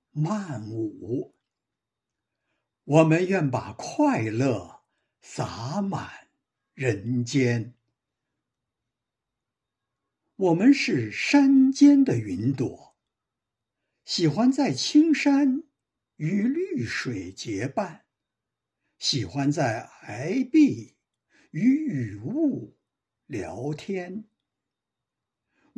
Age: 60-79